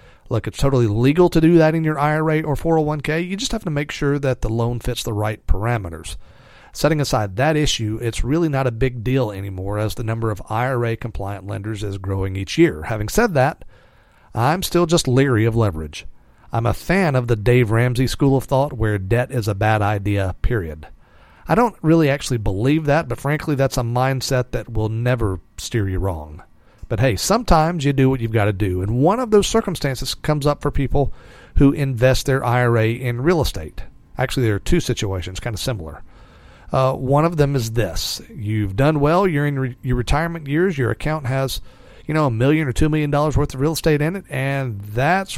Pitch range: 110-145 Hz